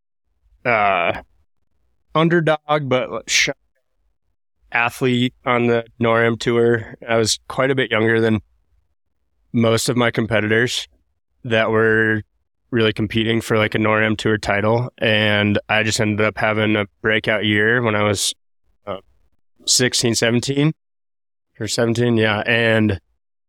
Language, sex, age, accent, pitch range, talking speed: English, male, 20-39, American, 95-115 Hz, 125 wpm